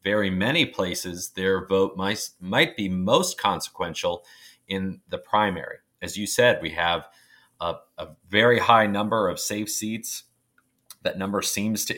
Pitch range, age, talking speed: 90-105 Hz, 30-49, 150 wpm